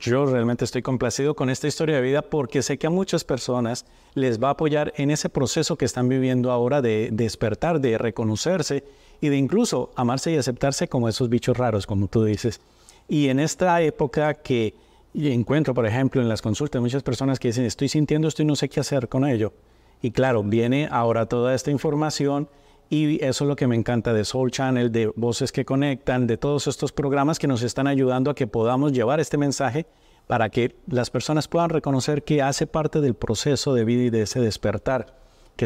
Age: 40-59